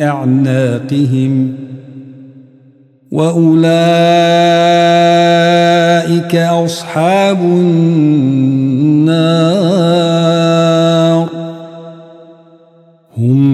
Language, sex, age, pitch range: Arabic, male, 50-69, 135-170 Hz